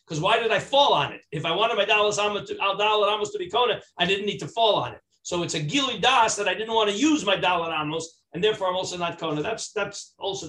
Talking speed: 270 wpm